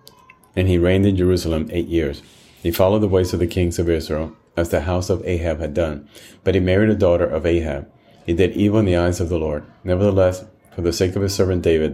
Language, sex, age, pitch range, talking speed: English, male, 30-49, 80-95 Hz, 235 wpm